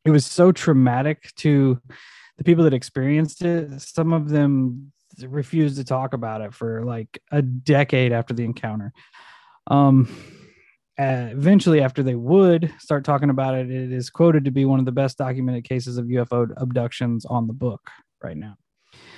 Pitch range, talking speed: 130-155 Hz, 165 wpm